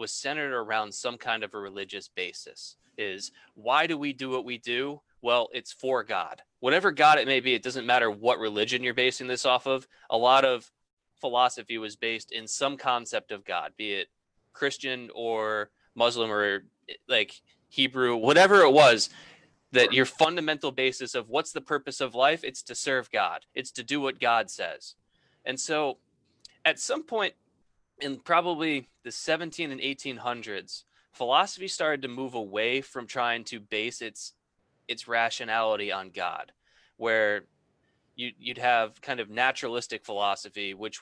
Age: 20-39